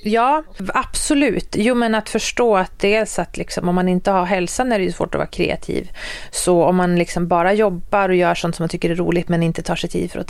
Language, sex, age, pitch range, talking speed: Swedish, female, 30-49, 180-220 Hz, 255 wpm